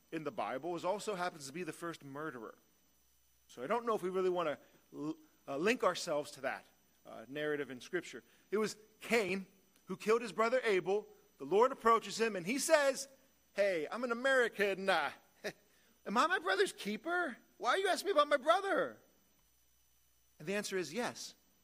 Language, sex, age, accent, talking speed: English, male, 40-59, American, 190 wpm